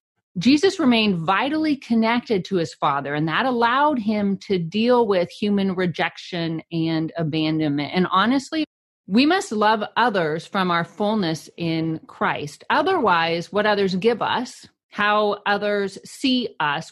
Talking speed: 135 wpm